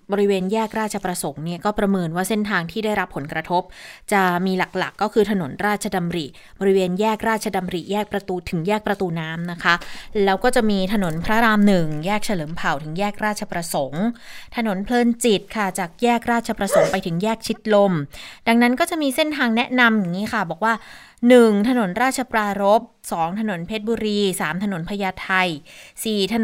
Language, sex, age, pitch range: Thai, female, 20-39, 180-220 Hz